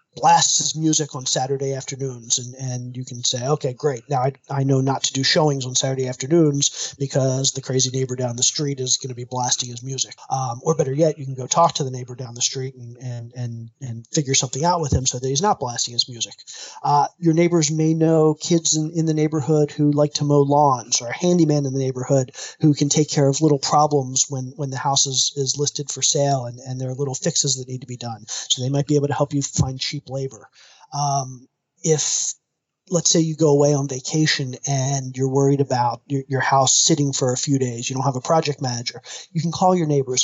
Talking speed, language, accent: 235 wpm, English, American